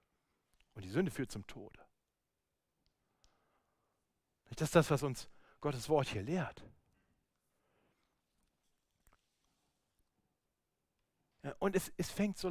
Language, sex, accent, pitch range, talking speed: German, male, German, 145-205 Hz, 95 wpm